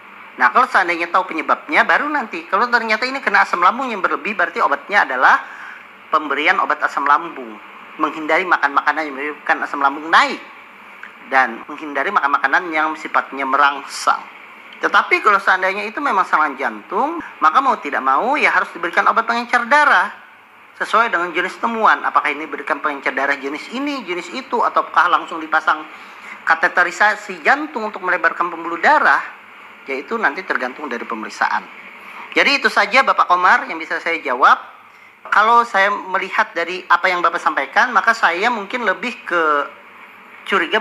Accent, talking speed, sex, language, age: native, 150 wpm, male, Indonesian, 40-59